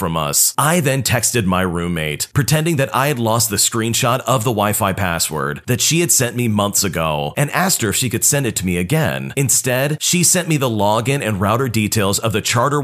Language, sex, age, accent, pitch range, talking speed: English, male, 40-59, American, 105-140 Hz, 225 wpm